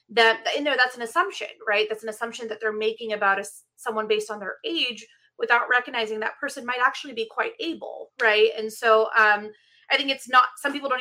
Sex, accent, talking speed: female, American, 220 wpm